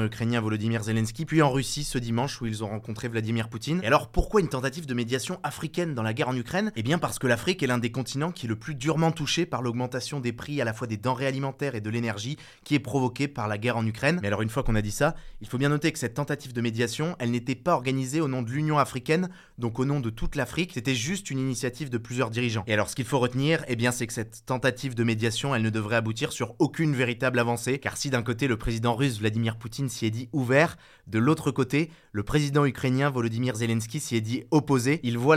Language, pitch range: French, 115-145 Hz